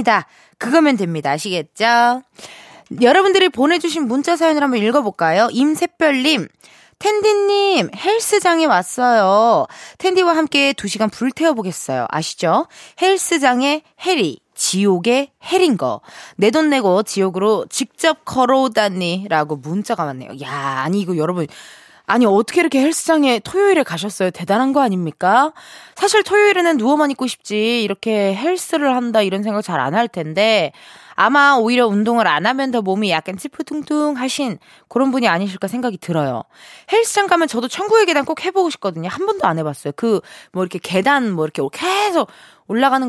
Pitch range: 185-305 Hz